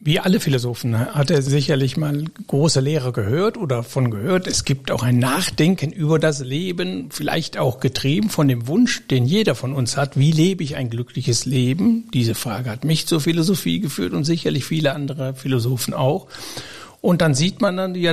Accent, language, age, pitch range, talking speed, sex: German, German, 60-79, 135-175 Hz, 190 wpm, male